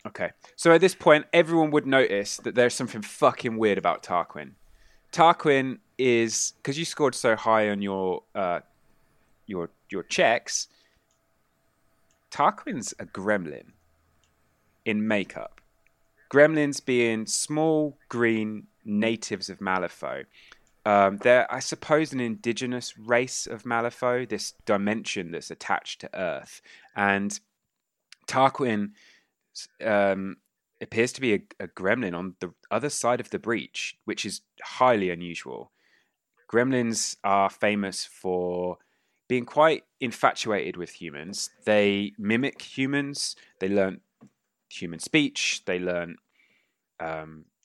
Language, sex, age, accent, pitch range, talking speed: English, male, 20-39, British, 95-125 Hz, 120 wpm